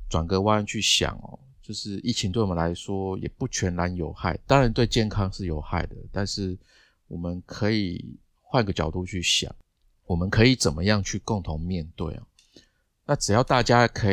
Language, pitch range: Chinese, 85-110 Hz